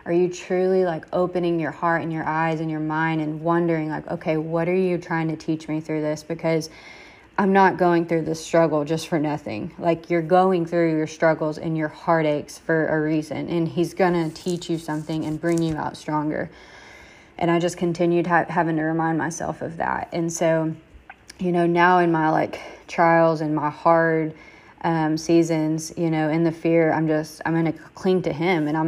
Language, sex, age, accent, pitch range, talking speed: English, female, 20-39, American, 155-170 Hz, 205 wpm